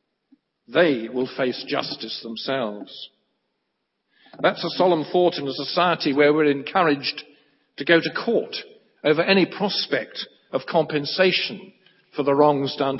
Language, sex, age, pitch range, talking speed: English, male, 50-69, 135-175 Hz, 130 wpm